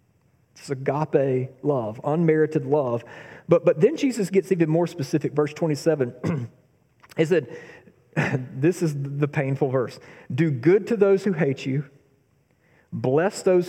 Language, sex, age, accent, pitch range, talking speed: English, male, 40-59, American, 130-160 Hz, 135 wpm